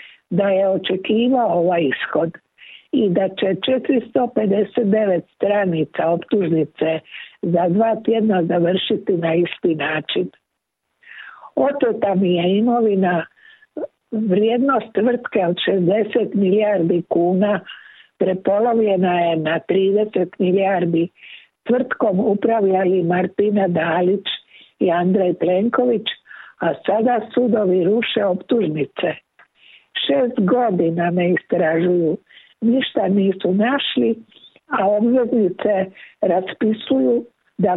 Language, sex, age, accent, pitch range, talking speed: Croatian, female, 60-79, native, 175-225 Hz, 90 wpm